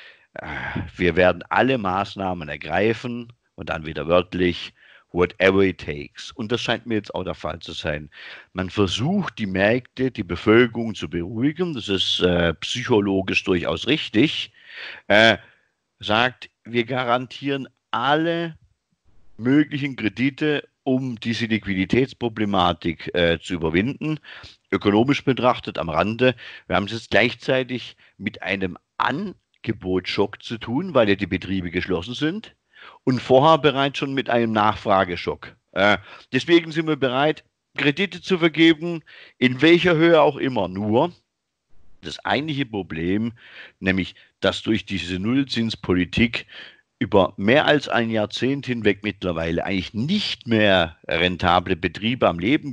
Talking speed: 130 wpm